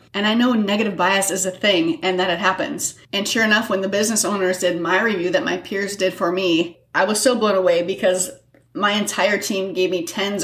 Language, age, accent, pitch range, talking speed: English, 30-49, American, 185-240 Hz, 230 wpm